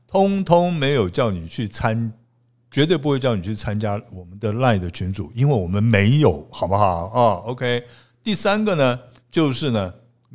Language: Chinese